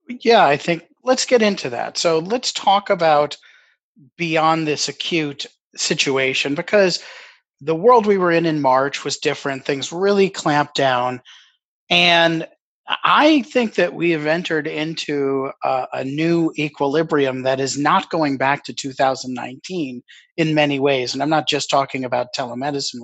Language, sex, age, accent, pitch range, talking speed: English, male, 40-59, American, 140-195 Hz, 150 wpm